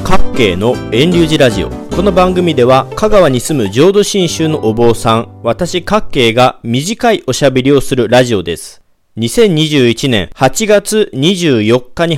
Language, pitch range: Japanese, 125-190 Hz